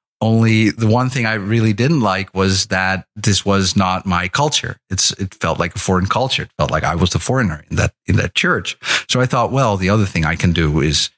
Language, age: English, 40-59